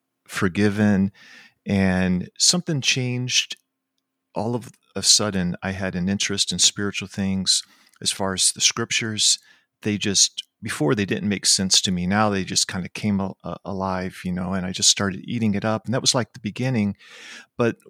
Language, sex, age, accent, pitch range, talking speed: English, male, 40-59, American, 95-115 Hz, 175 wpm